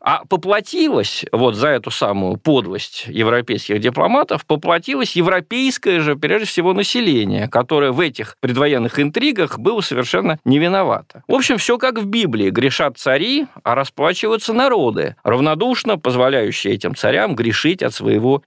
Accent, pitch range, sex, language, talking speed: native, 125-185 Hz, male, Russian, 135 wpm